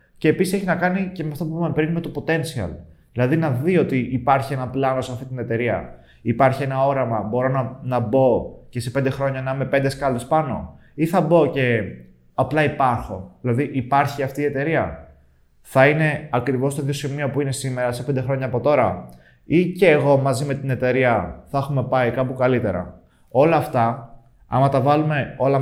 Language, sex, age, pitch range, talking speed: Greek, male, 20-39, 120-150 Hz, 195 wpm